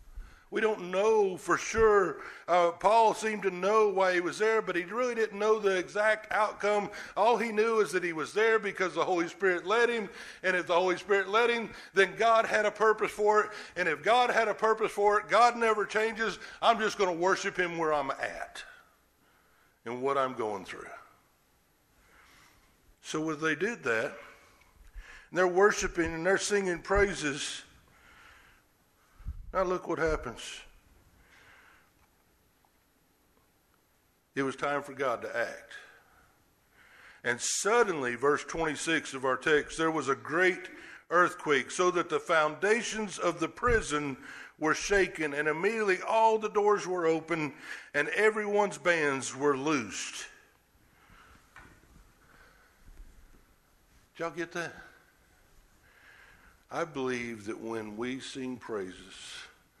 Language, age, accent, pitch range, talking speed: English, 60-79, American, 155-215 Hz, 140 wpm